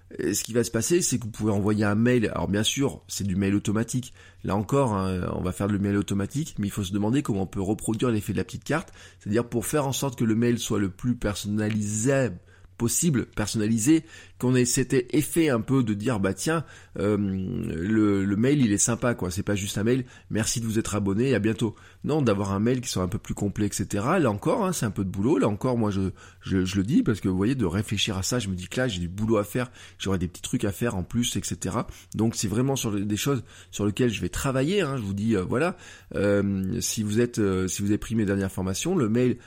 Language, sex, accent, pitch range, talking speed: French, male, French, 95-120 Hz, 265 wpm